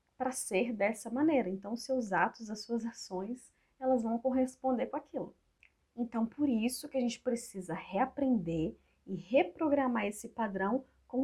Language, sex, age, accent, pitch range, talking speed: Portuguese, female, 30-49, Brazilian, 195-260 Hz, 150 wpm